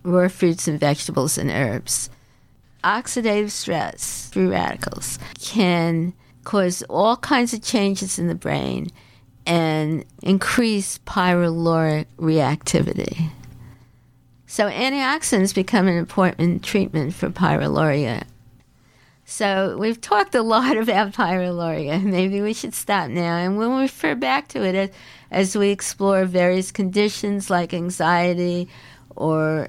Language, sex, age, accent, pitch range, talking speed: English, female, 50-69, American, 155-195 Hz, 115 wpm